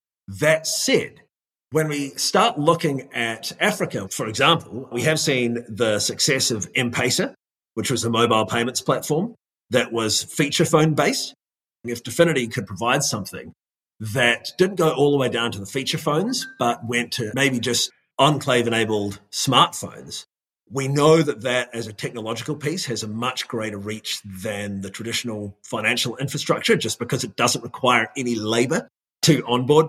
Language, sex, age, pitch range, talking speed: English, male, 30-49, 115-150 Hz, 160 wpm